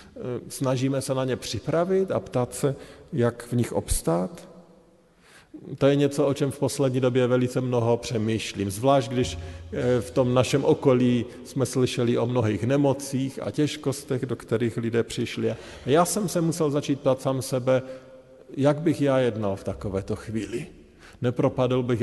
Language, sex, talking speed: Slovak, male, 155 wpm